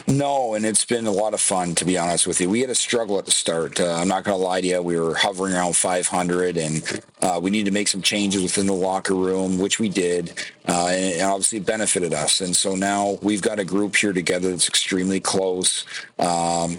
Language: English